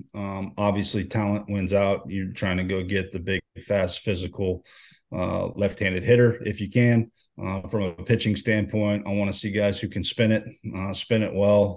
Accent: American